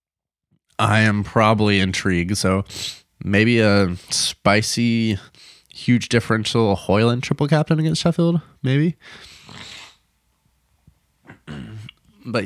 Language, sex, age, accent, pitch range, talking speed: English, male, 20-39, American, 90-110 Hz, 80 wpm